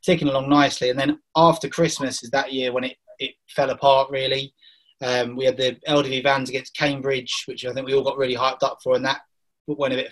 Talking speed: 230 wpm